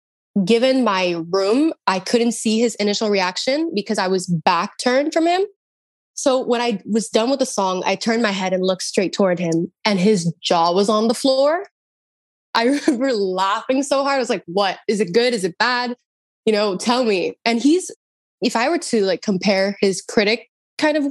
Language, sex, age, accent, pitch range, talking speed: English, female, 20-39, American, 200-265 Hz, 200 wpm